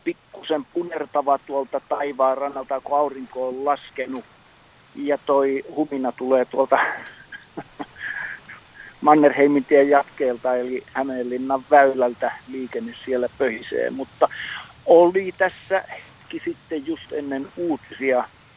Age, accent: 50-69, native